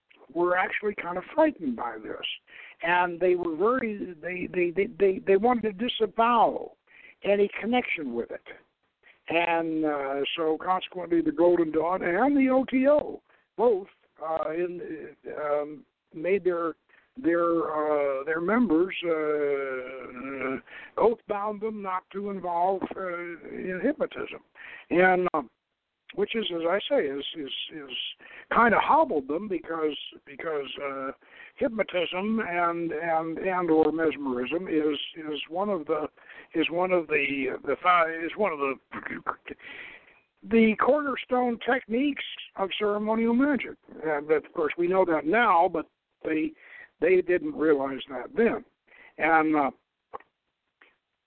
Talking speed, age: 130 wpm, 60-79